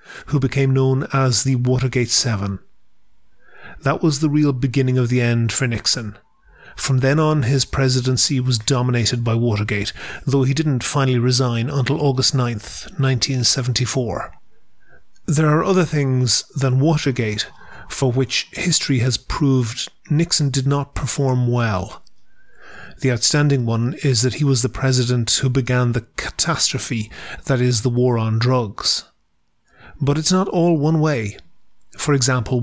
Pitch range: 125-140 Hz